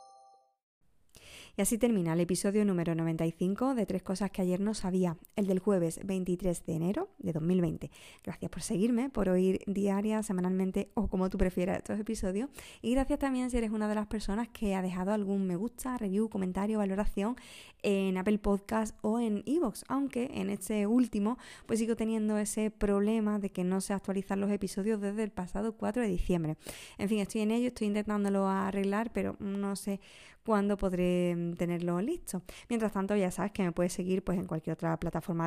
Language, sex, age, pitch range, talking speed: Spanish, female, 20-39, 185-220 Hz, 185 wpm